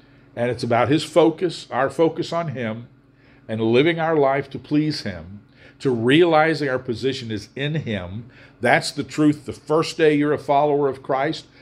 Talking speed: 175 wpm